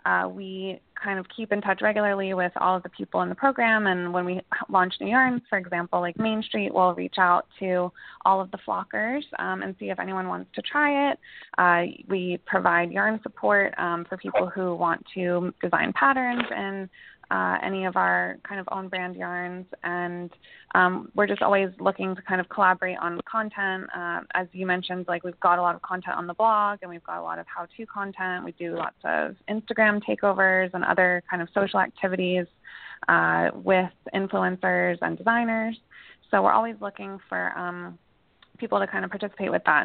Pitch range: 170-195 Hz